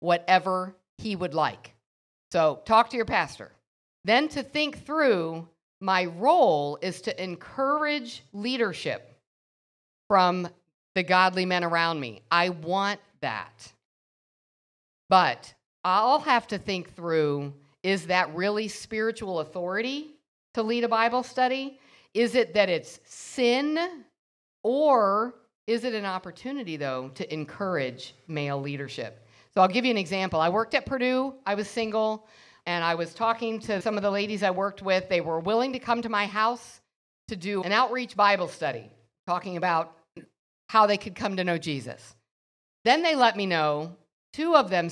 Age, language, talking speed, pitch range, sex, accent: 50-69, English, 155 wpm, 165-230 Hz, female, American